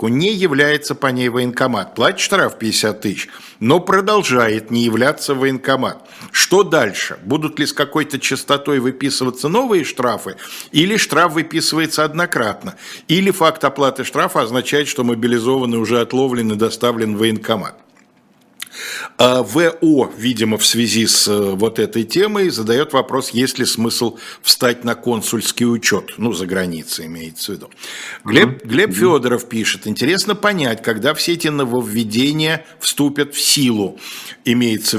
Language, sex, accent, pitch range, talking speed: Russian, male, native, 115-145 Hz, 130 wpm